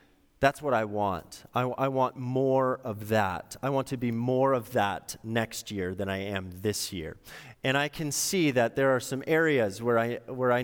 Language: English